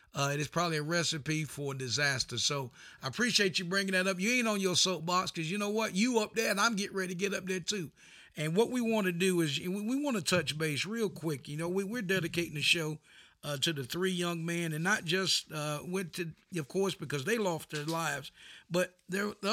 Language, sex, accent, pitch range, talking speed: English, male, American, 150-185 Hz, 245 wpm